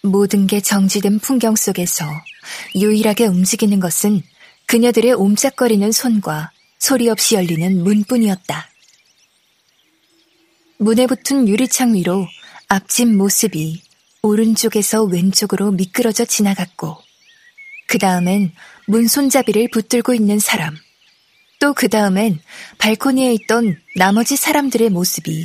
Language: Korean